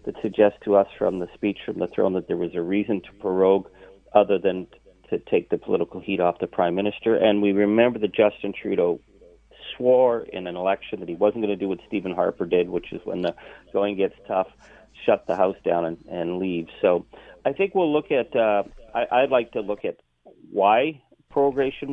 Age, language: 40-59, English